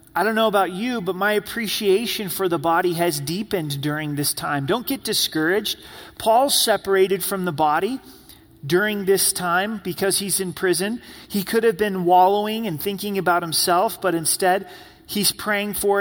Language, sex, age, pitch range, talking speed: English, male, 30-49, 145-195 Hz, 170 wpm